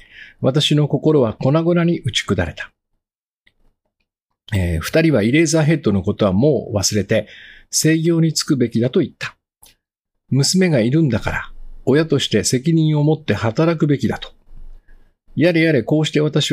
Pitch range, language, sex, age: 110-150 Hz, Japanese, male, 50-69